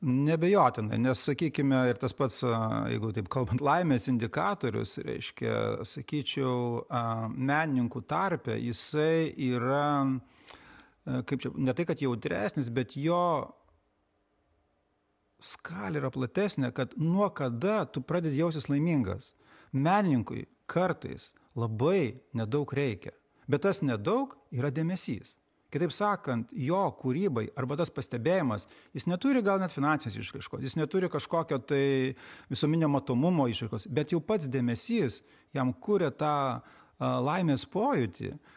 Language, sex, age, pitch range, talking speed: English, male, 40-59, 130-170 Hz, 115 wpm